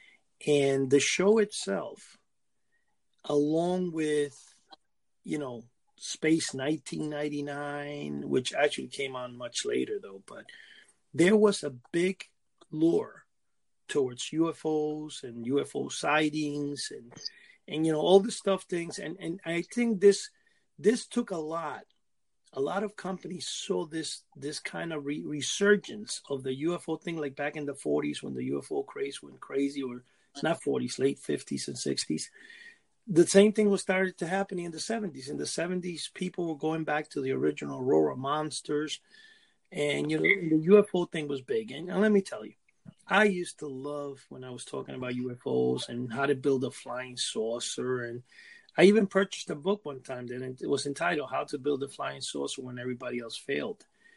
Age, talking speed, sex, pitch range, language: 40-59, 170 wpm, male, 135-195 Hz, English